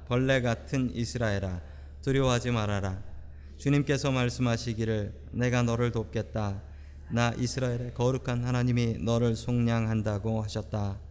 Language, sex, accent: Korean, male, native